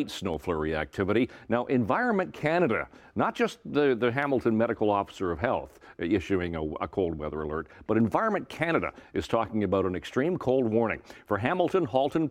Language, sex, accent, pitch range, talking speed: English, male, American, 105-135 Hz, 170 wpm